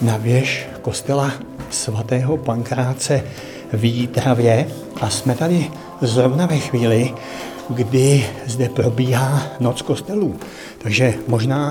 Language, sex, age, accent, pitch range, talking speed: Czech, male, 60-79, native, 120-145 Hz, 95 wpm